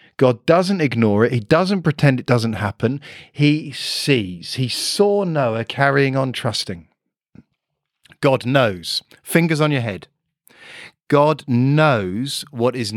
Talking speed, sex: 130 wpm, male